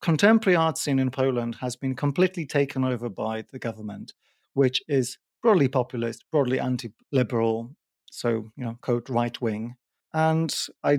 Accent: British